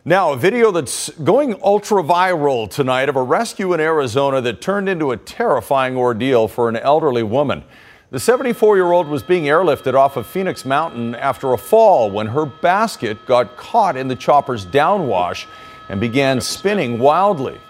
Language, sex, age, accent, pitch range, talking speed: English, male, 50-69, American, 120-180 Hz, 160 wpm